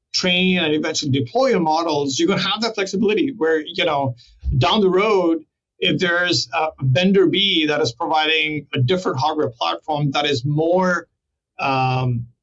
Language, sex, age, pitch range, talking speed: English, male, 50-69, 135-175 Hz, 160 wpm